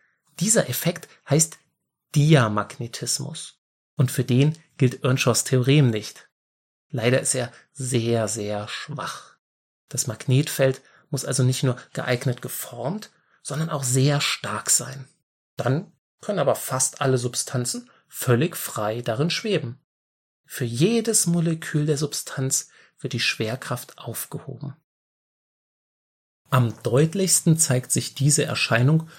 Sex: male